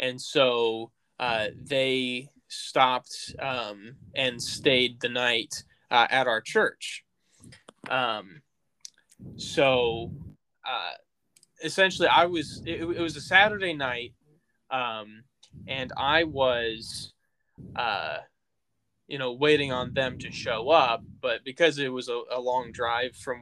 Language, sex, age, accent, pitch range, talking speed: English, male, 10-29, American, 125-160 Hz, 125 wpm